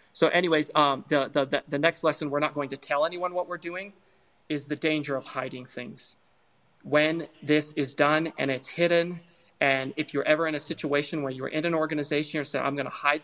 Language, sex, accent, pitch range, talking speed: English, male, American, 140-165 Hz, 220 wpm